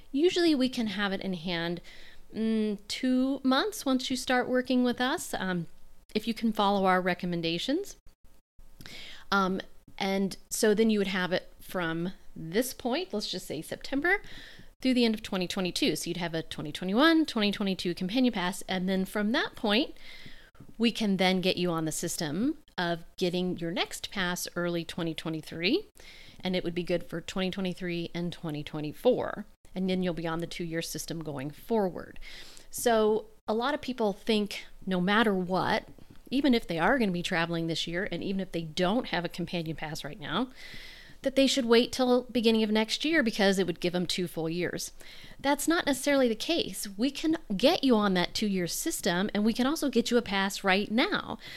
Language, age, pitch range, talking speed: English, 40-59, 175-250 Hz, 185 wpm